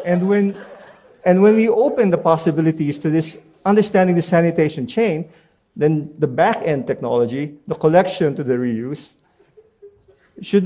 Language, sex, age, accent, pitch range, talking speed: English, male, 50-69, Filipino, 135-180 Hz, 135 wpm